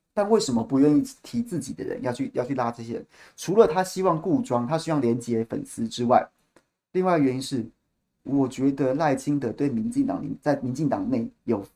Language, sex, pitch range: Chinese, male, 130-180 Hz